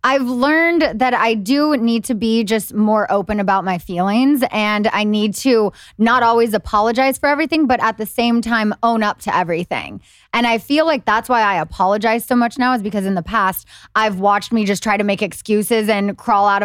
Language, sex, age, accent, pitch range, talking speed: English, female, 20-39, American, 210-255 Hz, 215 wpm